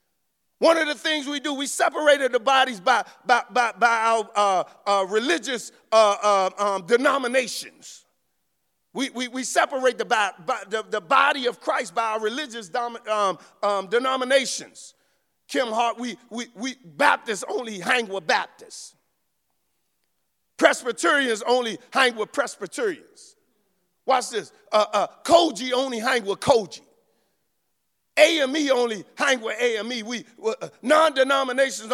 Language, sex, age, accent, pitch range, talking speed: English, male, 50-69, American, 235-300 Hz, 135 wpm